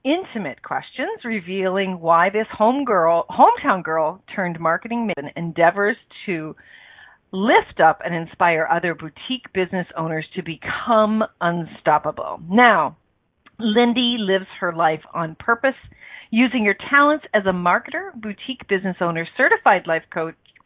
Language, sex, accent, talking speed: English, female, American, 130 wpm